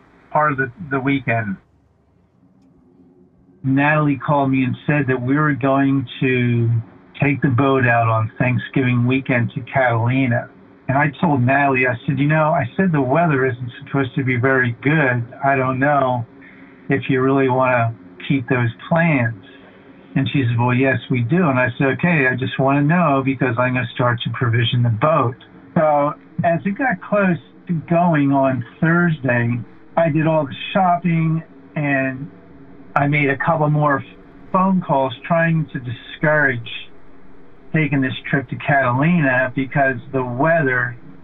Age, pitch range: 50-69, 125-150 Hz